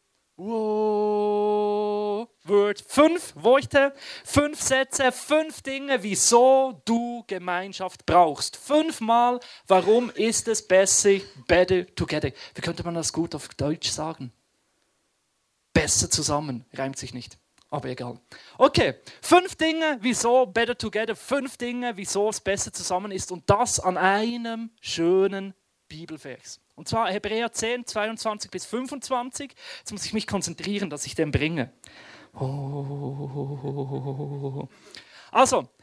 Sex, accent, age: male, German, 30-49